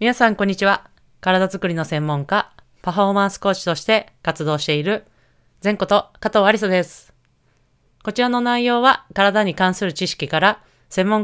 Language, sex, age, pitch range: Japanese, female, 20-39, 150-210 Hz